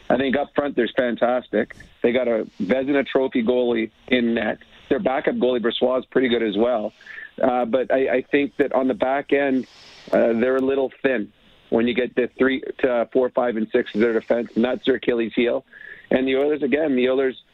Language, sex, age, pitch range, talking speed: English, male, 40-59, 120-135 Hz, 215 wpm